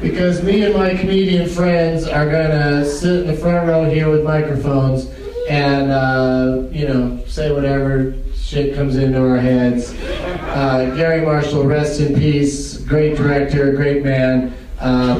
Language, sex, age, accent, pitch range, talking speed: English, male, 40-59, American, 145-195 Hz, 150 wpm